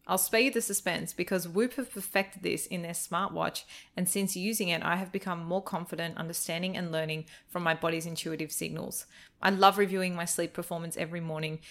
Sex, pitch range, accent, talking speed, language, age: female, 165-190 Hz, Australian, 195 wpm, English, 20-39